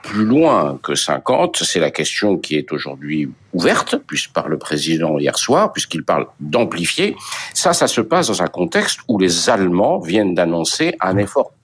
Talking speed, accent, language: 170 wpm, French, French